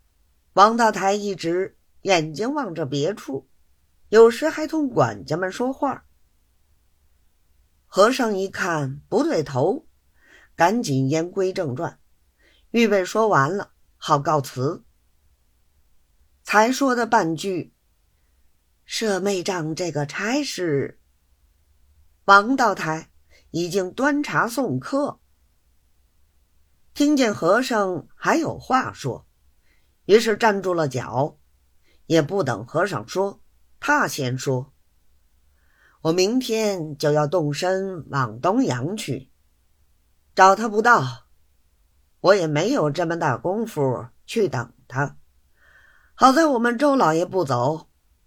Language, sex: Chinese, female